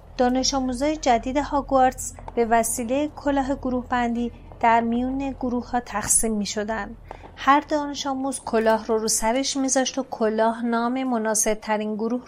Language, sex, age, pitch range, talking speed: Persian, female, 30-49, 220-255 Hz, 130 wpm